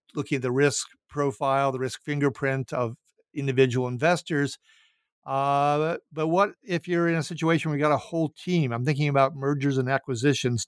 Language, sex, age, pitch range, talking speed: English, male, 50-69, 130-155 Hz, 175 wpm